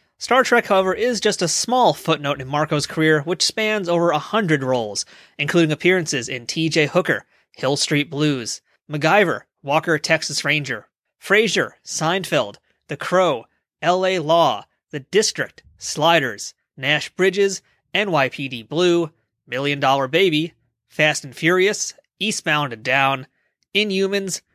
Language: English